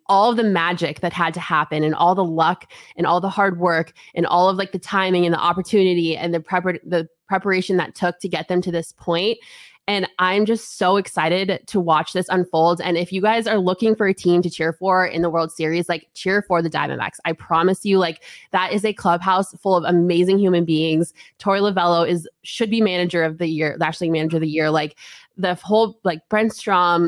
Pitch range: 170-205 Hz